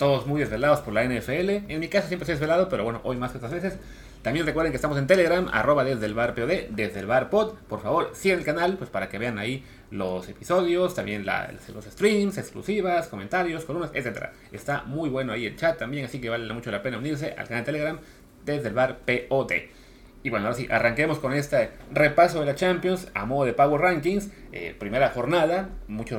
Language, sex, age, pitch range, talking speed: Spanish, male, 30-49, 115-165 Hz, 215 wpm